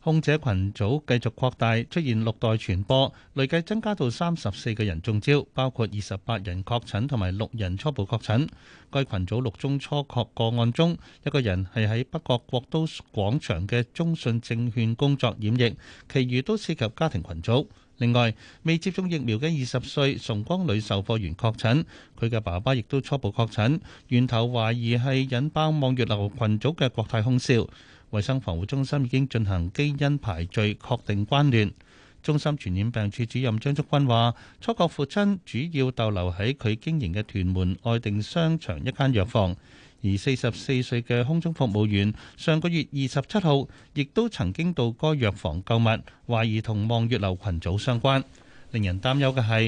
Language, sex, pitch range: Chinese, male, 105-140 Hz